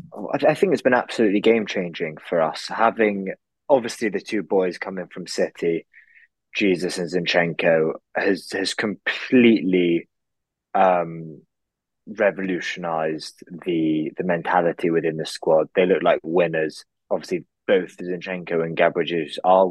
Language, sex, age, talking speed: English, male, 20-39, 120 wpm